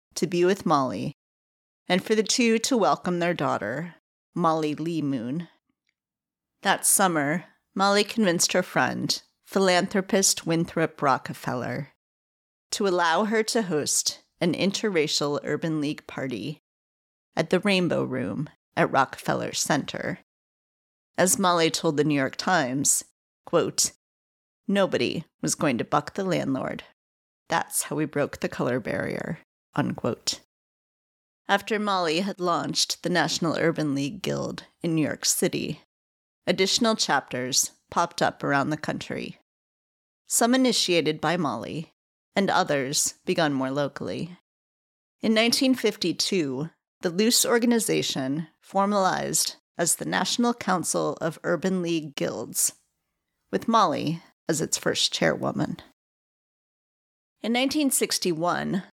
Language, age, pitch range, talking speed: English, 30-49, 150-200 Hz, 115 wpm